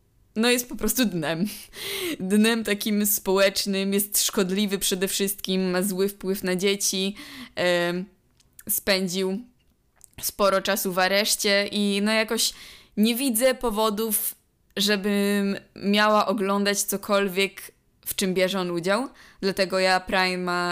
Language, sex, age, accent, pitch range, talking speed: Polish, female, 20-39, native, 190-225 Hz, 120 wpm